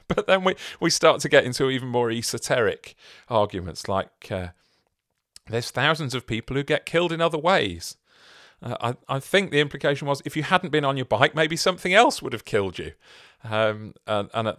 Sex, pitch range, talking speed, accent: male, 90-135 Hz, 200 wpm, British